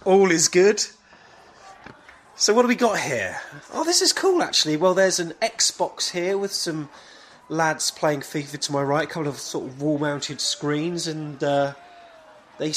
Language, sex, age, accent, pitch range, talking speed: English, male, 30-49, British, 125-165 Hz, 175 wpm